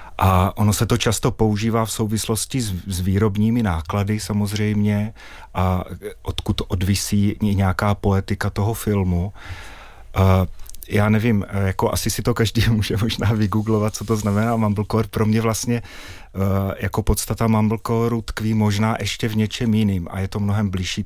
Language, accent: Czech, native